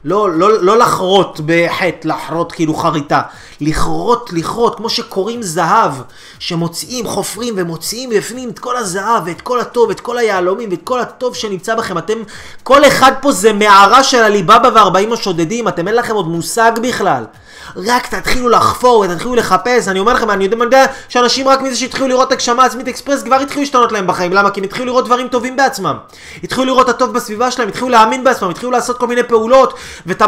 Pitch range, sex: 170-245 Hz, male